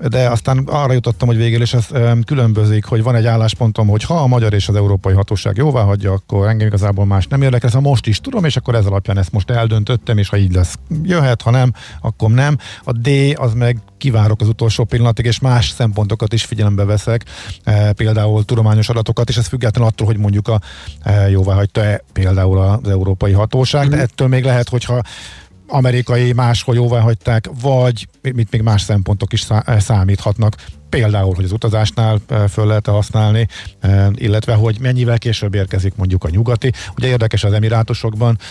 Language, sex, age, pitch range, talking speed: Hungarian, male, 50-69, 100-120 Hz, 185 wpm